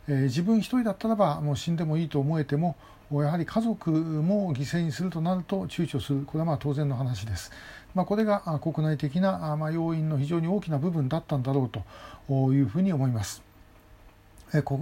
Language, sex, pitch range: Japanese, male, 140-185 Hz